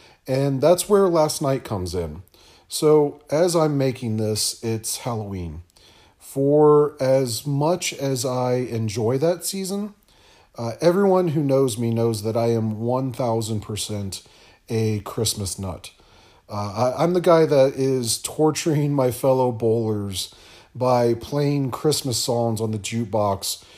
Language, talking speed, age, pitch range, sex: English, 135 wpm, 40-59, 110-145 Hz, male